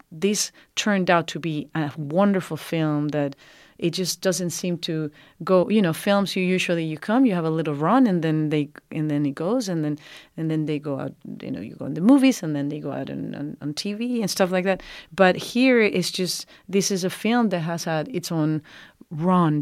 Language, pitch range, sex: English, 150-185 Hz, female